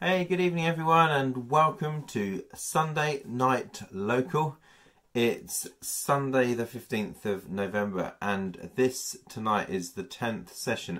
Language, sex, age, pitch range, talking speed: English, male, 30-49, 90-130 Hz, 125 wpm